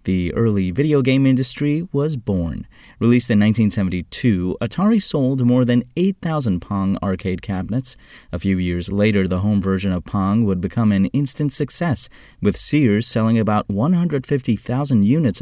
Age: 30-49